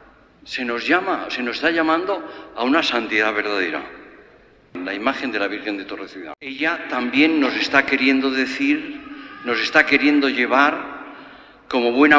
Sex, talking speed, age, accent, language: male, 150 wpm, 60-79, Spanish, Spanish